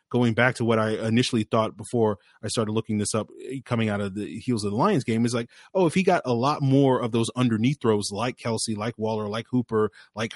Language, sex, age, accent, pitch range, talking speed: English, male, 30-49, American, 110-130 Hz, 245 wpm